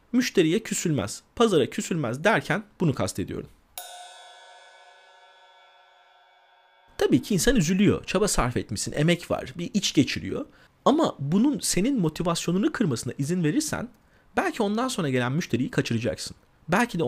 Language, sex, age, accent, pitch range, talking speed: Turkish, male, 40-59, native, 175-275 Hz, 120 wpm